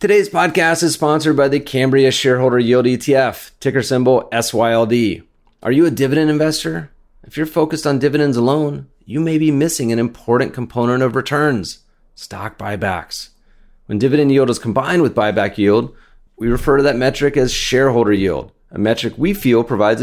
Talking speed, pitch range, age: 170 wpm, 100-135 Hz, 30-49